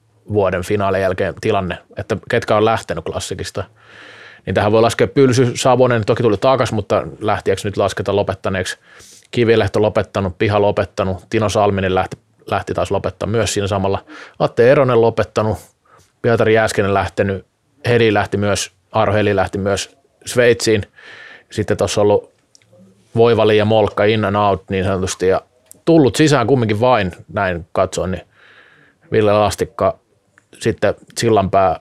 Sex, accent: male, native